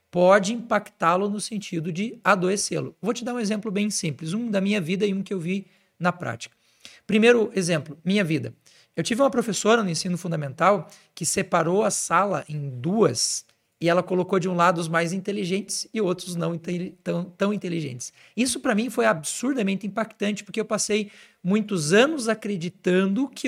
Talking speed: 175 wpm